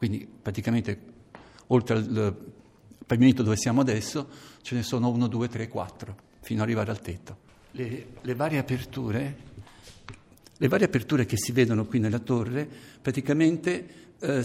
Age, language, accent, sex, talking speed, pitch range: 50-69, Italian, native, male, 145 wpm, 105-130 Hz